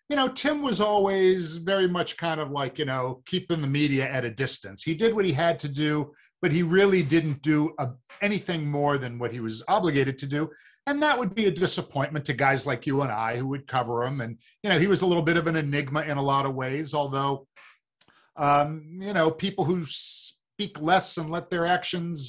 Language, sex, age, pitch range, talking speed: English, male, 50-69, 135-185 Hz, 225 wpm